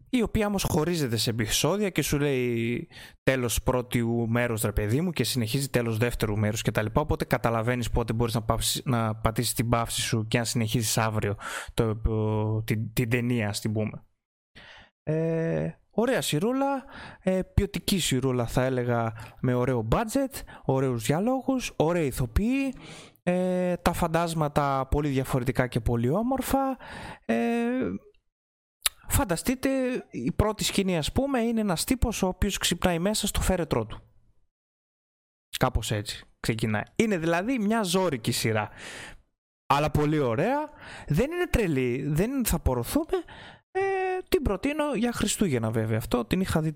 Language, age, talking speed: Greek, 20-39, 145 wpm